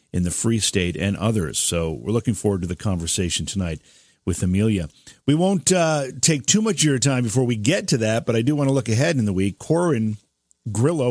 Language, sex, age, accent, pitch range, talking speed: English, male, 50-69, American, 95-125 Hz, 225 wpm